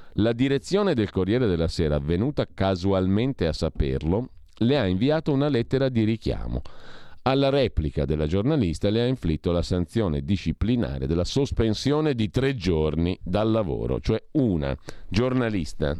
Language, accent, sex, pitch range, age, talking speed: Italian, native, male, 85-120 Hz, 50-69, 140 wpm